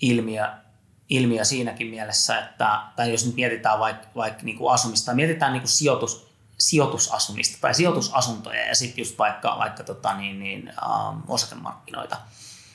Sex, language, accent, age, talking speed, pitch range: male, Finnish, native, 30-49, 135 wpm, 110-125 Hz